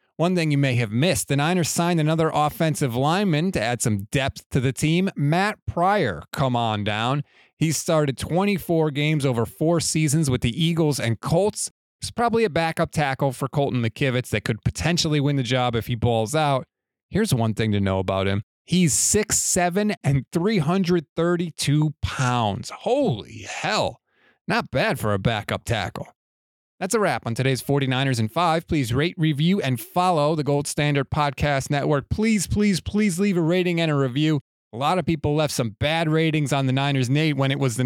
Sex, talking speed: male, 185 wpm